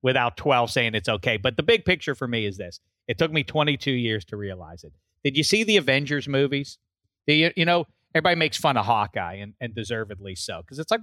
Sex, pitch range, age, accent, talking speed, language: male, 100-160 Hz, 40-59, American, 235 wpm, English